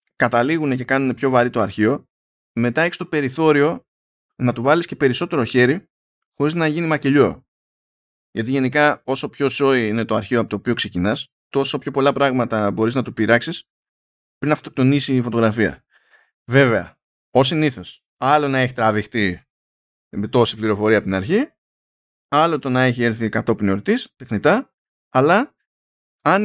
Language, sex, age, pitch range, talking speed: Greek, male, 20-39, 110-150 Hz, 155 wpm